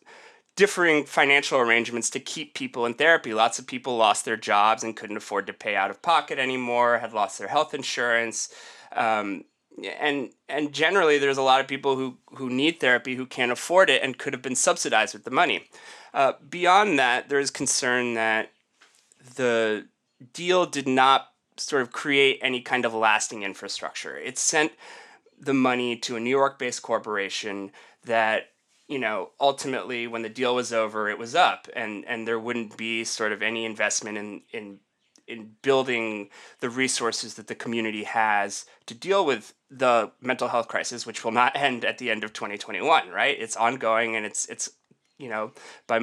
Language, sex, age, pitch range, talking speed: English, male, 20-39, 115-145 Hz, 180 wpm